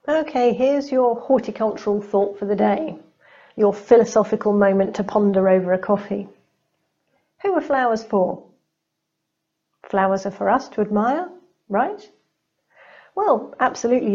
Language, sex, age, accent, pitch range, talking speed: English, female, 40-59, British, 200-255 Hz, 125 wpm